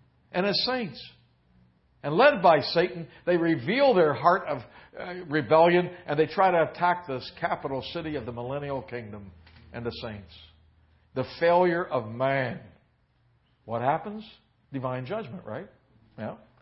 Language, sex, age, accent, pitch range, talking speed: English, male, 60-79, American, 110-165 Hz, 140 wpm